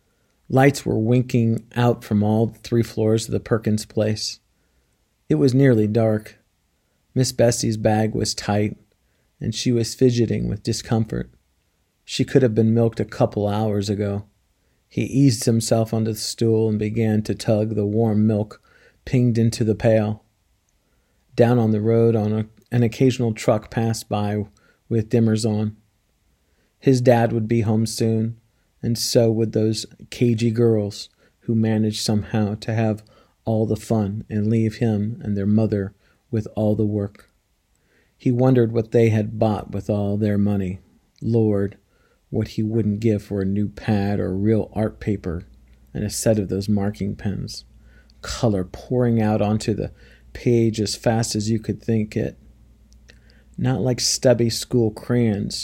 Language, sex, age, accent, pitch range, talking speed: English, male, 40-59, American, 105-115 Hz, 155 wpm